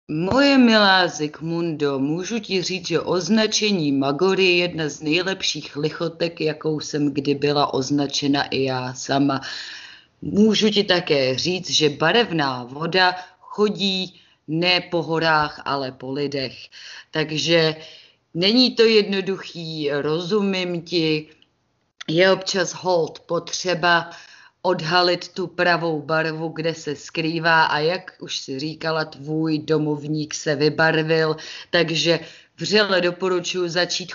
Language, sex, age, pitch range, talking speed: Czech, female, 30-49, 145-180 Hz, 115 wpm